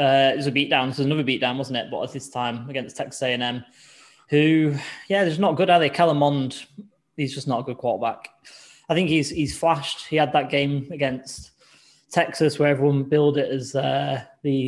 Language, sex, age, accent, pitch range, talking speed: English, male, 20-39, British, 135-155 Hz, 215 wpm